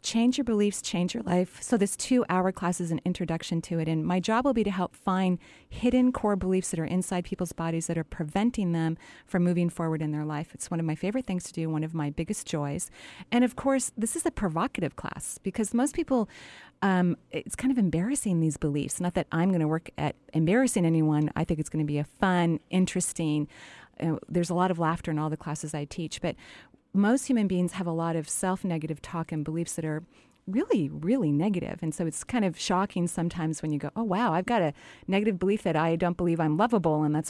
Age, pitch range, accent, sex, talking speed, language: 30-49, 160-195 Hz, American, female, 230 wpm, English